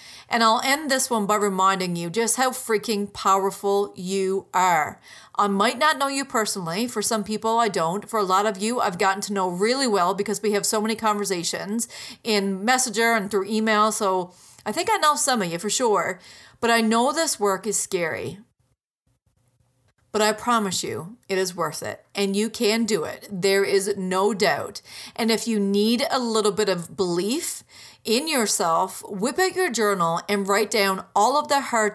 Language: English